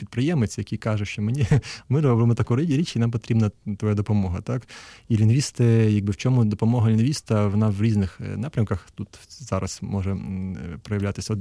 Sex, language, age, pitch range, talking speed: male, Ukrainian, 20-39, 105-120 Hz, 160 wpm